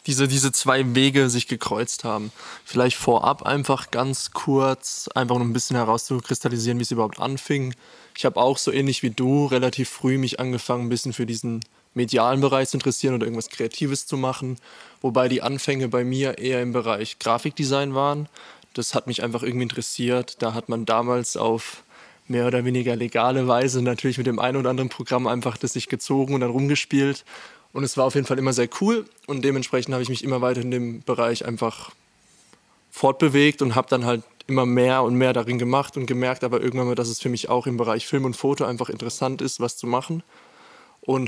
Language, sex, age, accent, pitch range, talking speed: German, male, 20-39, German, 120-135 Hz, 200 wpm